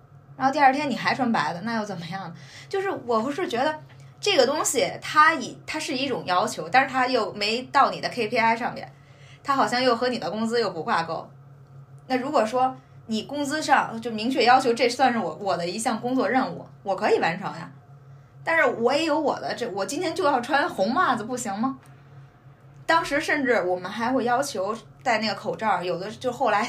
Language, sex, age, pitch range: Chinese, female, 20-39, 160-250 Hz